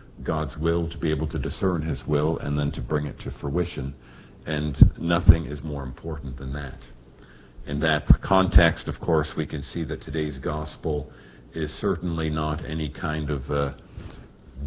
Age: 60-79